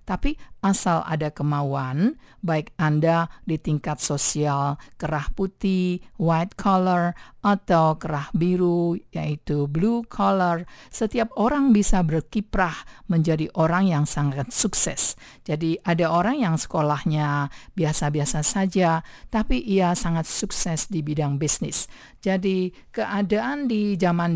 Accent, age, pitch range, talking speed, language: Indonesian, 50-69, 150-185 Hz, 115 wpm, English